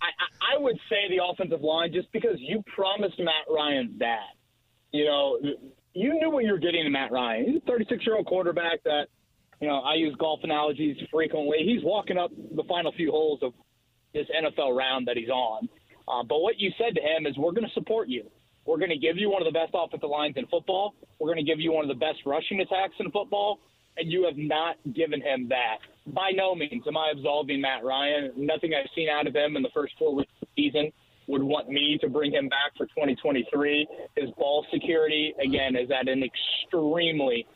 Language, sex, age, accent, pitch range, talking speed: English, male, 30-49, American, 145-205 Hz, 220 wpm